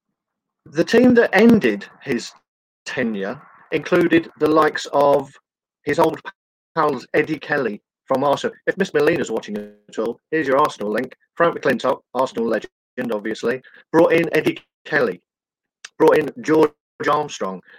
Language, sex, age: English, male, 40-59